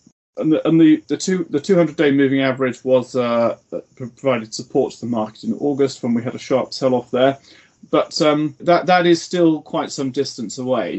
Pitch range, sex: 110-135 Hz, male